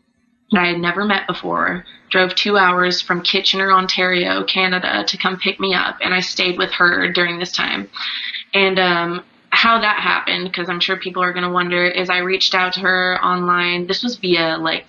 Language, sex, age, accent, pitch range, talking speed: English, female, 20-39, American, 175-190 Hz, 200 wpm